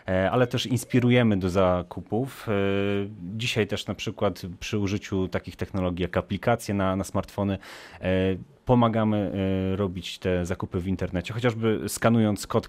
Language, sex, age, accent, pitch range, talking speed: Polish, male, 30-49, native, 90-110 Hz, 130 wpm